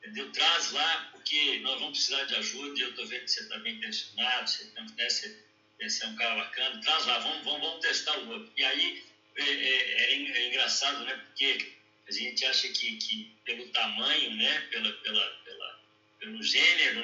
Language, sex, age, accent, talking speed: Portuguese, male, 60-79, Brazilian, 185 wpm